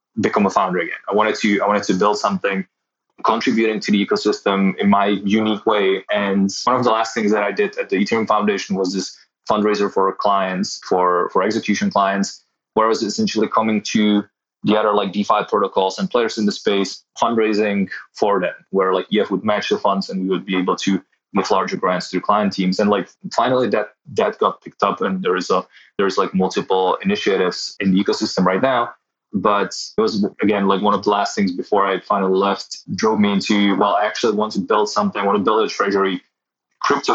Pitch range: 95-105 Hz